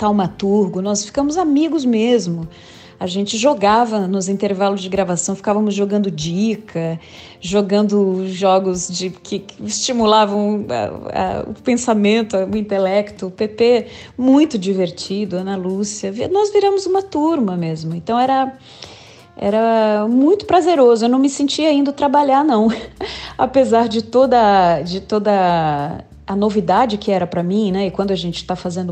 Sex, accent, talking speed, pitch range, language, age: female, Brazilian, 140 wpm, 185-225 Hz, Portuguese, 30-49